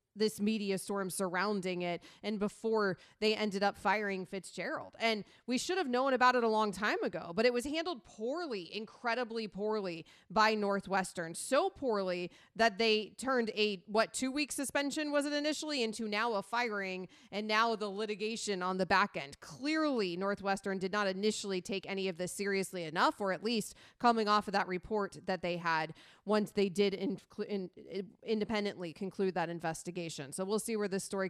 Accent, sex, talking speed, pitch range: American, female, 175 wpm, 195-260 Hz